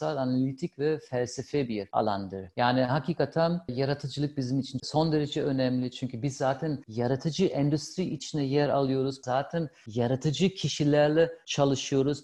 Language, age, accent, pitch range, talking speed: Turkish, 50-69, native, 125-160 Hz, 125 wpm